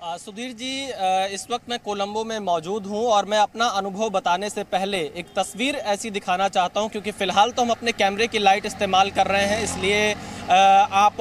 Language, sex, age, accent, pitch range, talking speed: English, male, 20-39, Indian, 205-255 Hz, 200 wpm